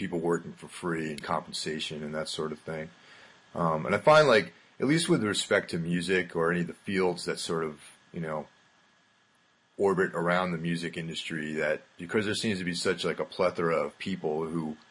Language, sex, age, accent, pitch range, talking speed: English, male, 30-49, American, 80-95 Hz, 200 wpm